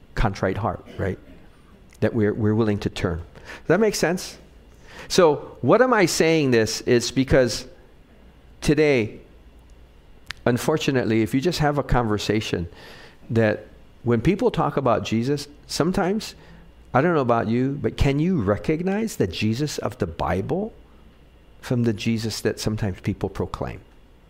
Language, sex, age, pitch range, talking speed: English, male, 50-69, 105-145 Hz, 140 wpm